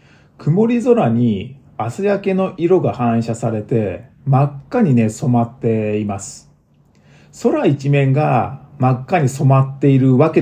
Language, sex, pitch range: Japanese, male, 115-160 Hz